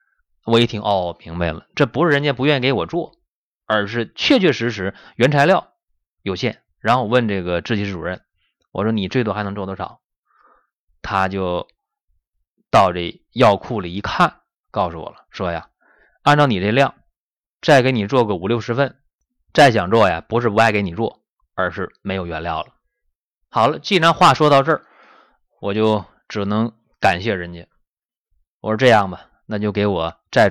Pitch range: 85-120 Hz